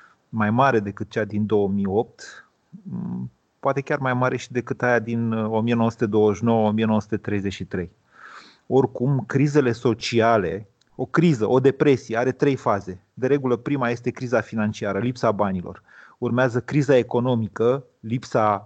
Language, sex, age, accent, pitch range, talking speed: Romanian, male, 30-49, native, 110-140 Hz, 120 wpm